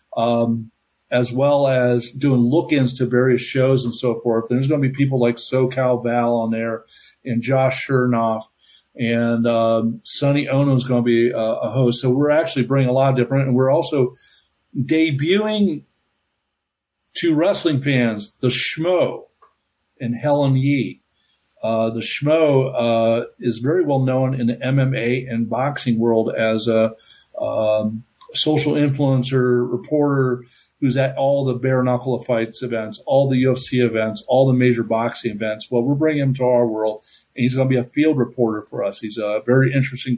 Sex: male